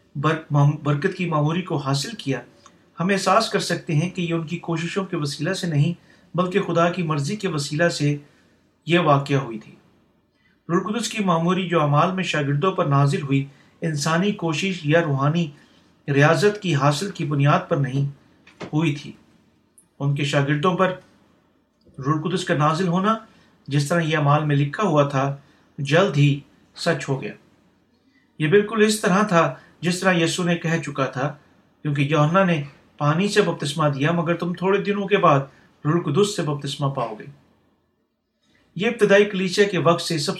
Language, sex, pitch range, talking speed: Urdu, male, 150-185 Hz, 170 wpm